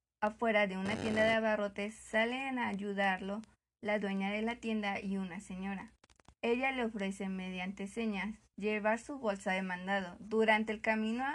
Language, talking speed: Spanish, 160 wpm